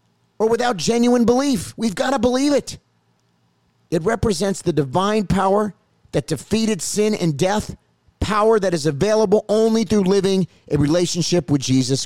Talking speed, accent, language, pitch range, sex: 150 wpm, American, English, 110-175 Hz, male